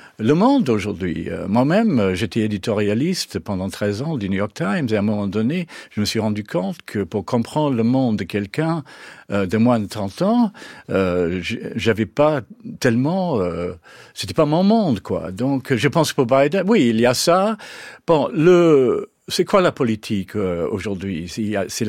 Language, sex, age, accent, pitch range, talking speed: French, male, 50-69, French, 110-170 Hz, 190 wpm